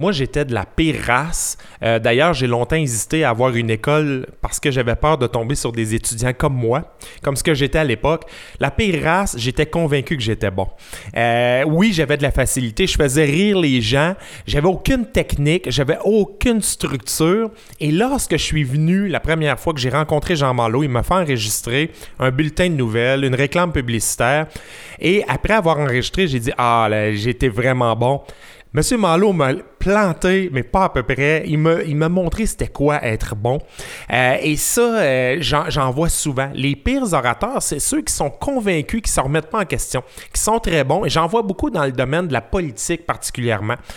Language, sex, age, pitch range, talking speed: French, male, 30-49, 125-170 Hz, 205 wpm